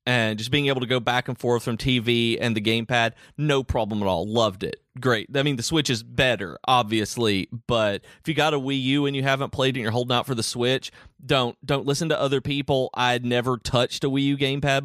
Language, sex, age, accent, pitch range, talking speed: English, male, 30-49, American, 115-140 Hz, 245 wpm